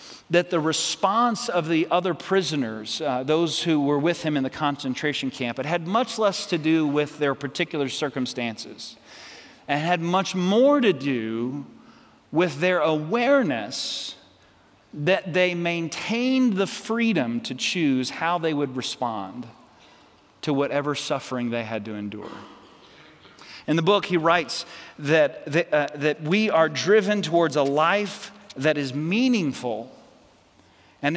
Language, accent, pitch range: English, American, 140-180 Hz